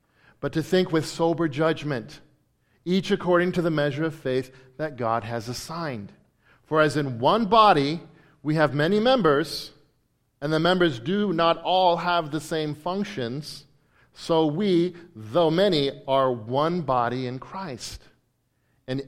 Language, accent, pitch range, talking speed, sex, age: English, American, 130-170 Hz, 145 wpm, male, 40-59